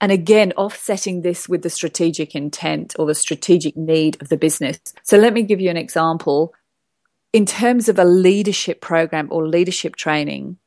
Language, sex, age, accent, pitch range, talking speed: English, female, 30-49, British, 160-185 Hz, 175 wpm